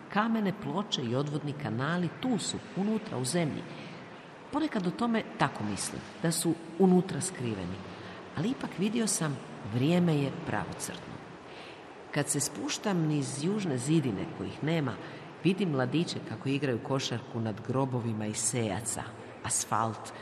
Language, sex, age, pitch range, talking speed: Croatian, female, 50-69, 110-170 Hz, 130 wpm